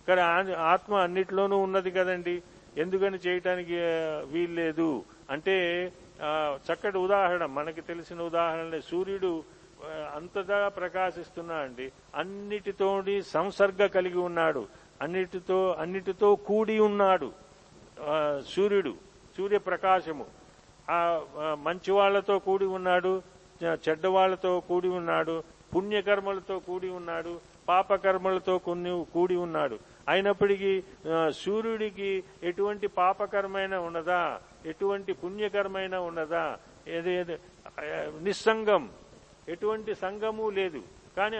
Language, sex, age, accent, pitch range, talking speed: Telugu, male, 50-69, native, 170-195 Hz, 80 wpm